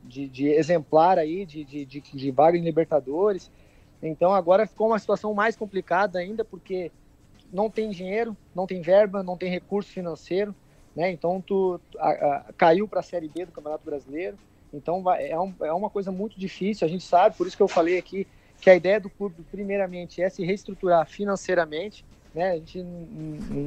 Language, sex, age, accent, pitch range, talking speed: Portuguese, male, 20-39, Brazilian, 150-190 Hz, 195 wpm